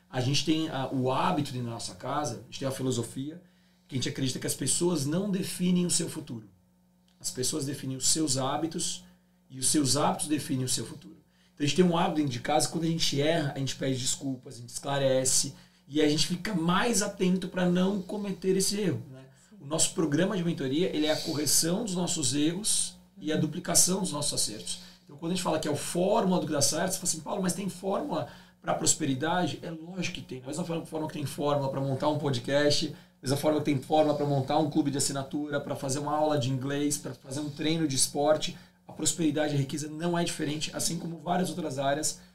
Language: Portuguese